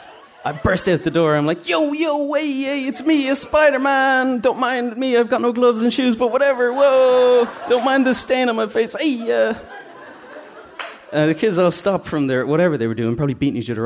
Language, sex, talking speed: English, male, 220 wpm